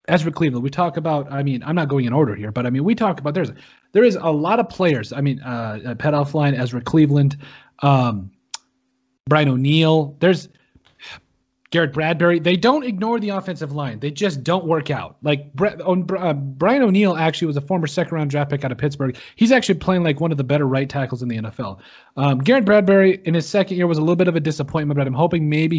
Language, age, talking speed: English, 30-49, 220 wpm